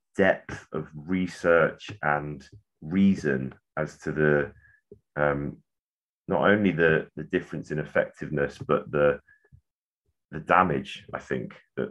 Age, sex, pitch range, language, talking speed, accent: 30-49, male, 65-85 Hz, English, 115 wpm, British